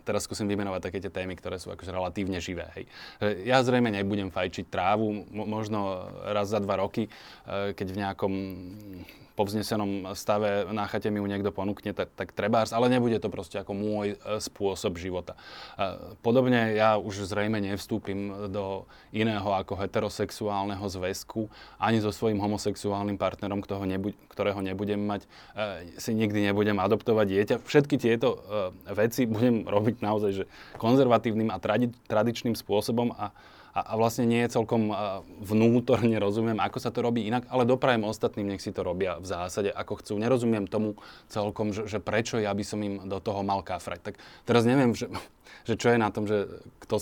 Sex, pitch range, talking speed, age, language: male, 100-115 Hz, 160 wpm, 20-39, Slovak